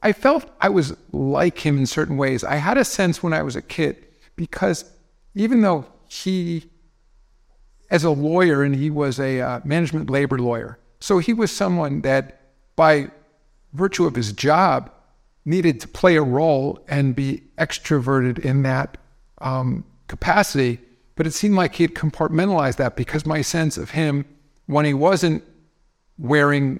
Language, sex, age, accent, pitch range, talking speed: English, male, 50-69, American, 135-180 Hz, 160 wpm